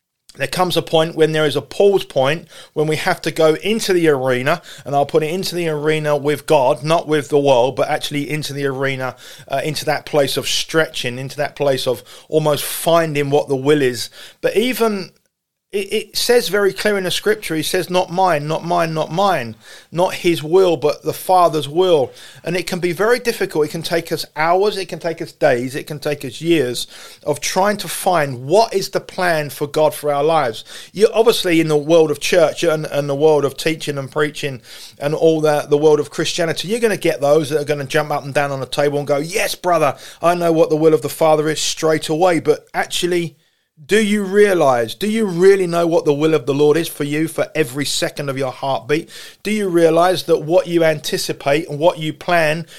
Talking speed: 225 wpm